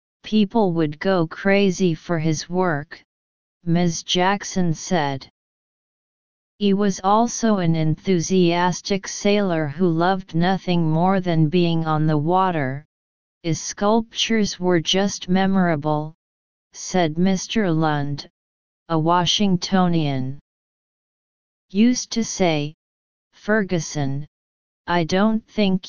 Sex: female